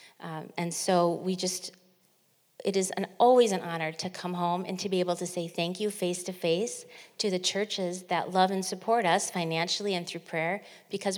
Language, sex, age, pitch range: English, female, 40-59, 175-215 Hz